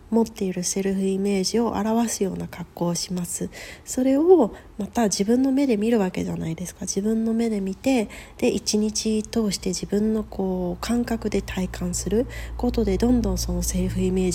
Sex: female